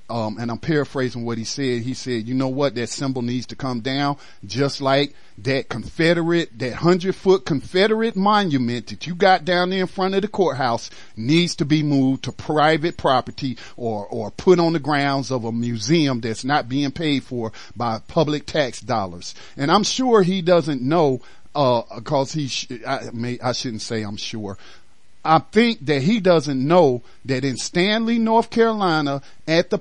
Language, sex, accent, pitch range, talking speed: English, male, American, 130-190 Hz, 185 wpm